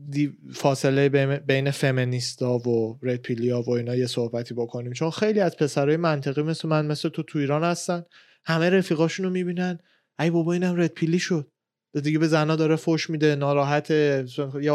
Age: 20-39